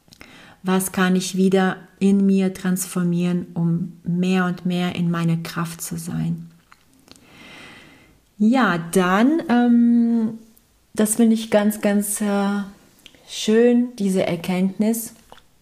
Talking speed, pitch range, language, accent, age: 110 wpm, 175-200 Hz, English, German, 40-59